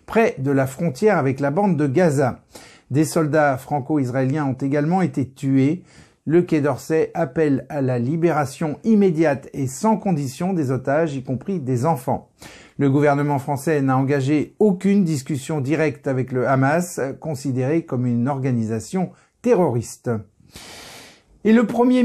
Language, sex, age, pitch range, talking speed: French, male, 50-69, 130-180 Hz, 140 wpm